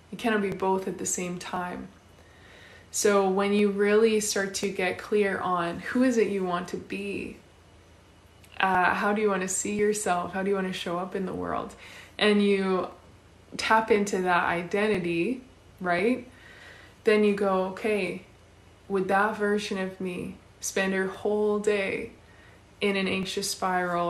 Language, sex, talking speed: English, female, 160 wpm